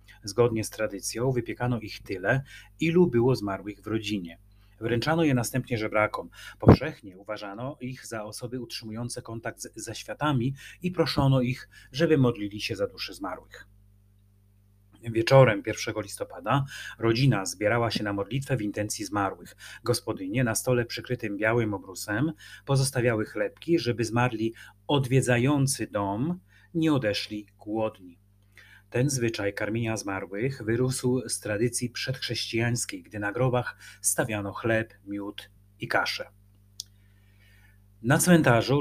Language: Polish